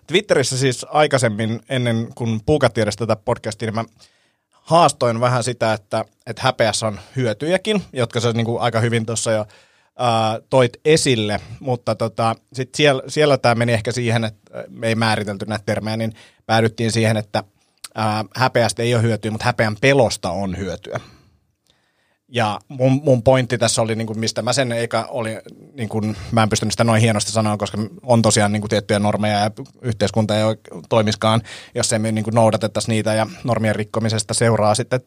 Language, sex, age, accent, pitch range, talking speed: Finnish, male, 30-49, native, 110-125 Hz, 175 wpm